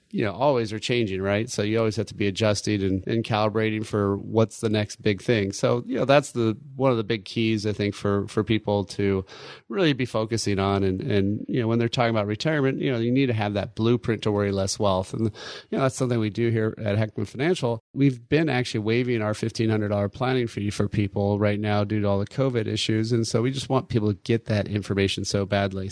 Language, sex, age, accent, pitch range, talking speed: English, male, 30-49, American, 105-125 Hz, 240 wpm